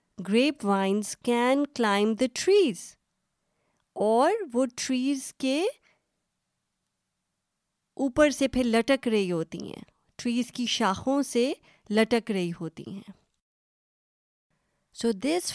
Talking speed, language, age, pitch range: 105 wpm, Urdu, 30-49, 205-270 Hz